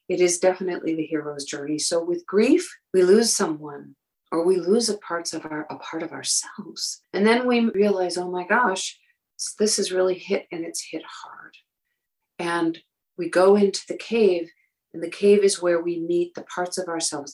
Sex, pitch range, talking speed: female, 165-210 Hz, 190 wpm